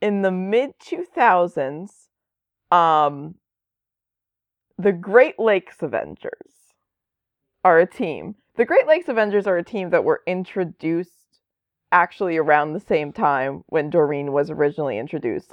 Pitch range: 145-195 Hz